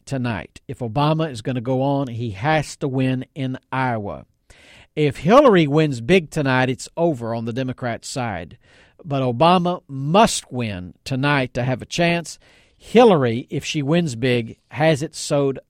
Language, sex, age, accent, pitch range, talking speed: English, male, 50-69, American, 125-160 Hz, 160 wpm